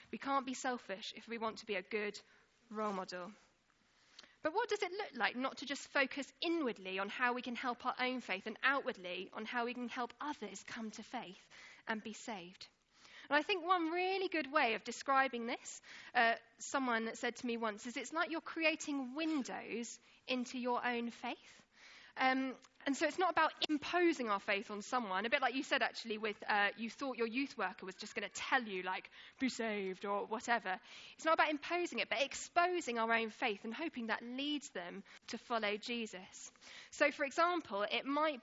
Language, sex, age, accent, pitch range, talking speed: English, female, 10-29, British, 220-295 Hz, 200 wpm